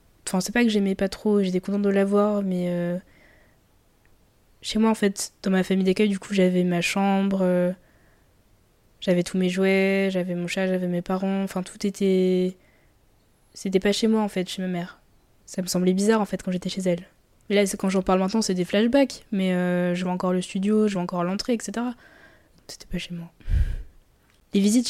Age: 20-39